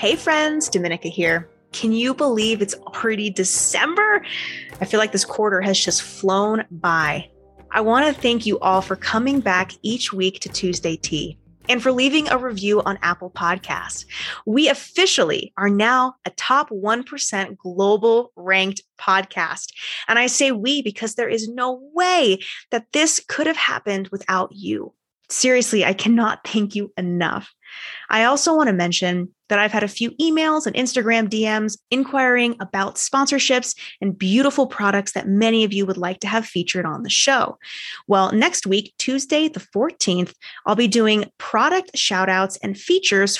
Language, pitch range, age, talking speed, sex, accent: English, 190-255 Hz, 20-39, 165 wpm, female, American